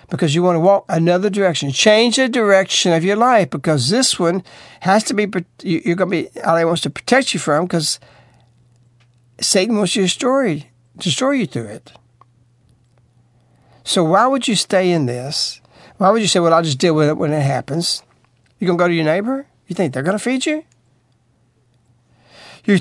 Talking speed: 190 wpm